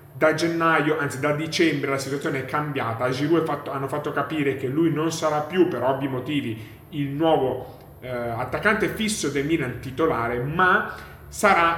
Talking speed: 160 wpm